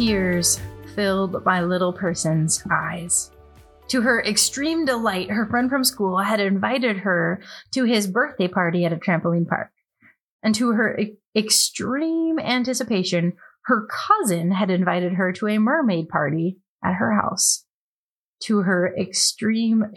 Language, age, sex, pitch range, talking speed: English, 30-49, female, 180-255 Hz, 135 wpm